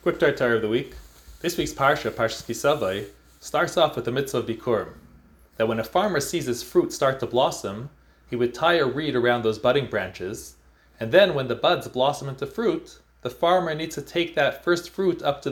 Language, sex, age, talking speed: English, male, 30-49, 210 wpm